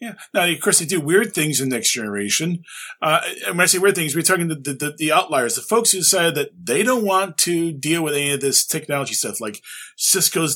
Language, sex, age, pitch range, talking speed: English, male, 40-59, 145-205 Hz, 255 wpm